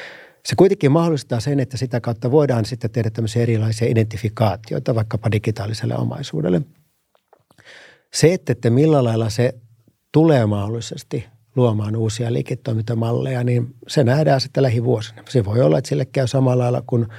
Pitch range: 115-135 Hz